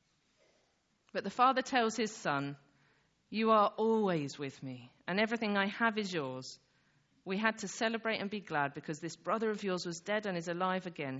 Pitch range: 150-205 Hz